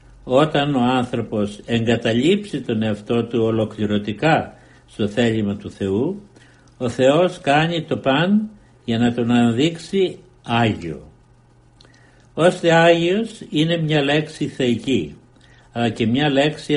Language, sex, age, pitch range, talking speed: Greek, male, 60-79, 120-155 Hz, 110 wpm